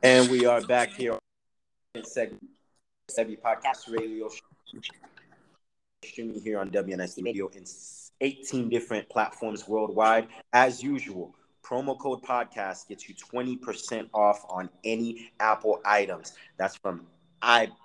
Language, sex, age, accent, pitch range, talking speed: English, male, 30-49, American, 110-130 Hz, 120 wpm